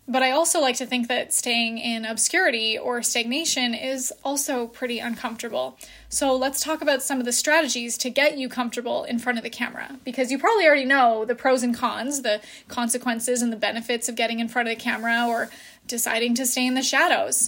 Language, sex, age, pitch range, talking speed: English, female, 20-39, 235-275 Hz, 210 wpm